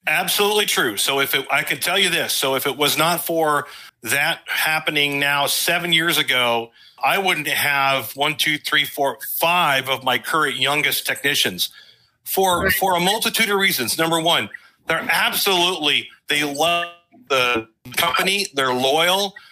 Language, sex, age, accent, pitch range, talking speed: English, male, 40-59, American, 145-180 Hz, 155 wpm